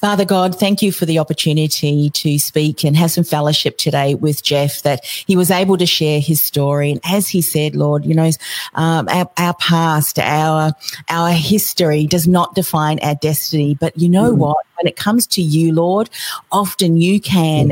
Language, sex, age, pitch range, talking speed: English, female, 40-59, 155-180 Hz, 190 wpm